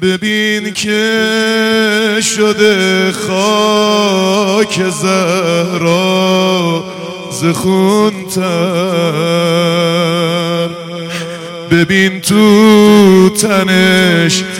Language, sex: Persian, male